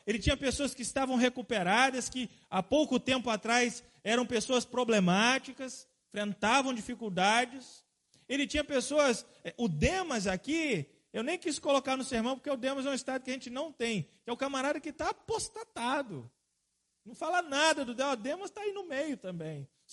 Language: Portuguese